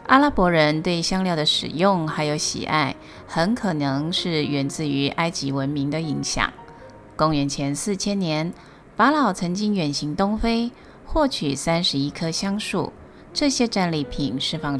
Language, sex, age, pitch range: Chinese, female, 30-49, 145-195 Hz